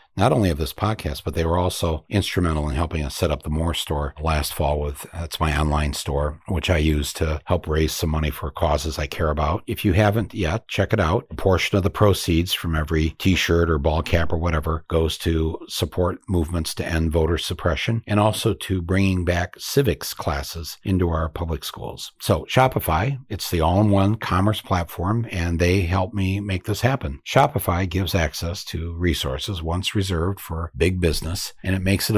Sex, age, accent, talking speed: male, 60-79, American, 200 wpm